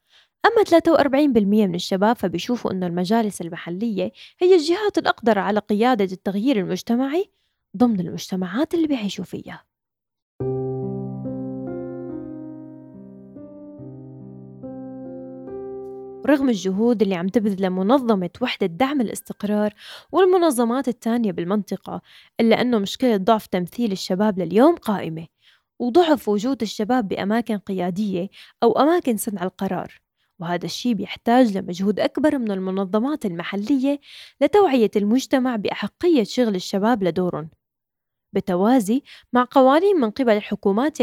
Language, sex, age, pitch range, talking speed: Arabic, female, 20-39, 180-255 Hz, 100 wpm